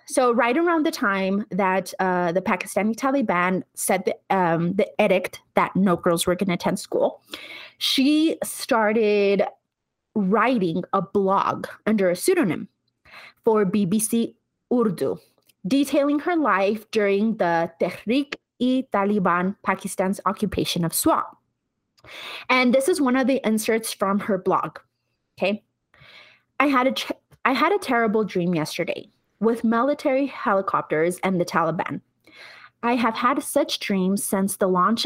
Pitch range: 185-235 Hz